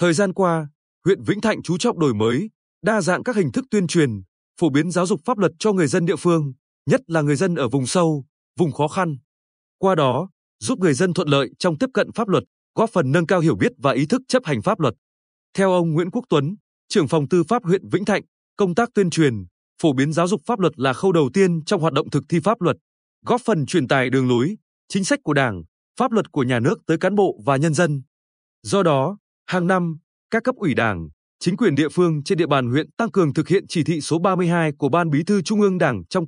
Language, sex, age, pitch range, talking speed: Vietnamese, male, 20-39, 145-195 Hz, 245 wpm